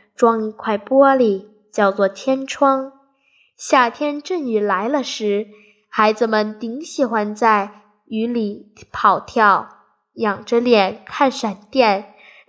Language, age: Chinese, 10-29